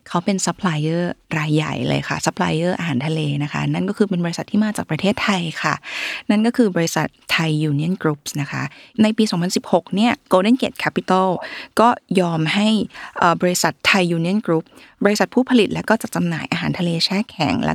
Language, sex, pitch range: Thai, female, 165-220 Hz